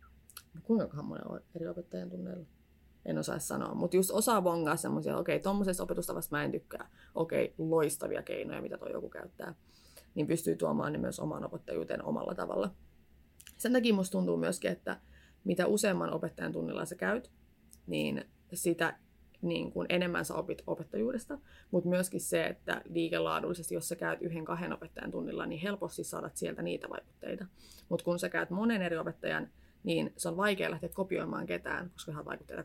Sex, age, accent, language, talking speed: female, 20-39, native, Finnish, 165 wpm